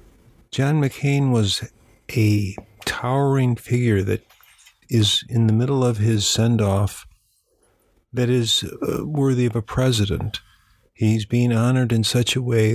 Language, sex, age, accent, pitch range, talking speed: English, male, 50-69, American, 105-120 Hz, 125 wpm